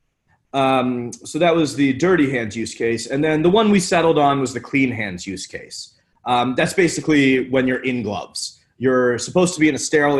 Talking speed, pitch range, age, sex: 210 wpm, 115-145 Hz, 30-49, male